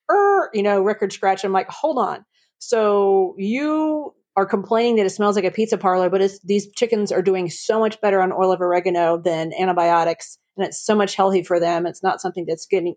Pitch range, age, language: 175-200 Hz, 40-59, English